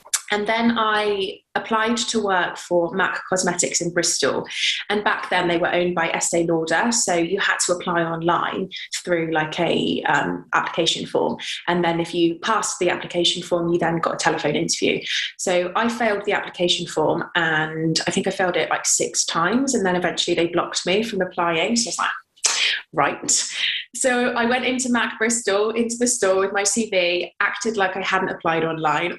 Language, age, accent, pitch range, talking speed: English, 20-39, British, 175-205 Hz, 190 wpm